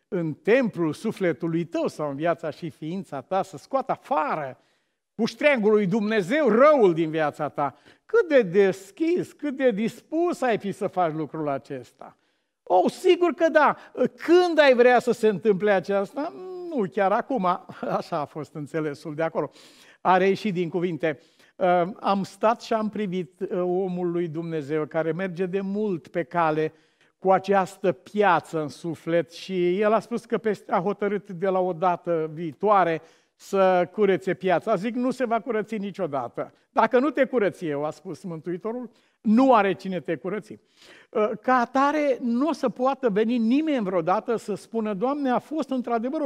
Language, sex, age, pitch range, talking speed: Romanian, male, 50-69, 175-240 Hz, 160 wpm